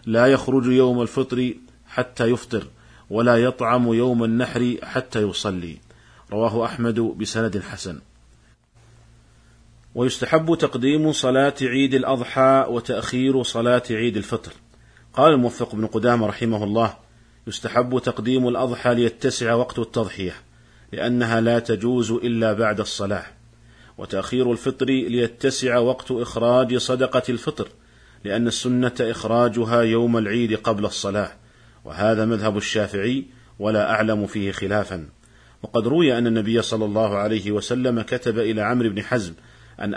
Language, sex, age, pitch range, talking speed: Arabic, male, 40-59, 110-125 Hz, 115 wpm